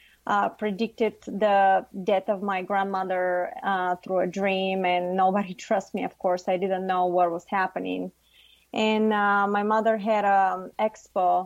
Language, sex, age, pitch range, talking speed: English, female, 20-39, 185-210 Hz, 160 wpm